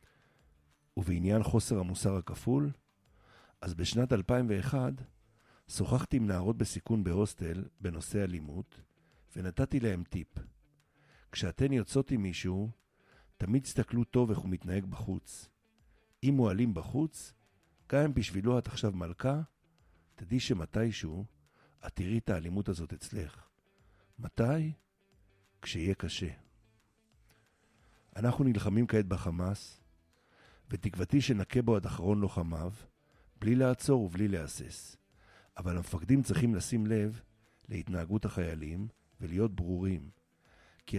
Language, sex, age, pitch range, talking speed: Hebrew, male, 50-69, 90-120 Hz, 105 wpm